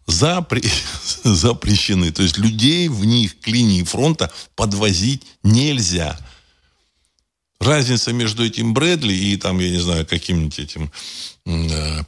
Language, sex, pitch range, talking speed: Russian, male, 80-115 Hz, 115 wpm